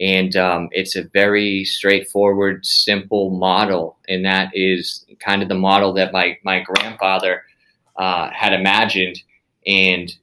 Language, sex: English, male